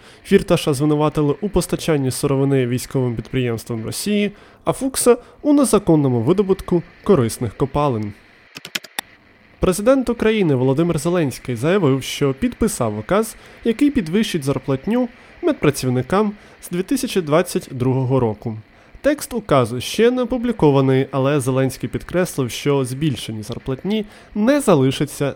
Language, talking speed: Ukrainian, 105 wpm